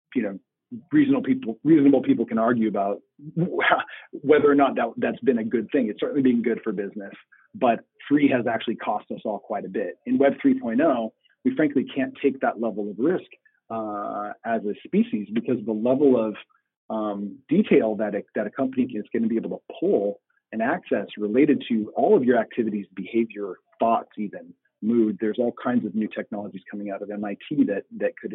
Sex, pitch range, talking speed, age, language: male, 110-145 Hz, 195 wpm, 40-59, English